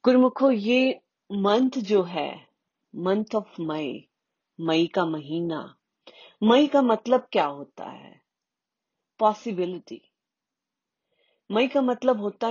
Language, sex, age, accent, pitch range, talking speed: Hindi, female, 30-49, native, 175-235 Hz, 105 wpm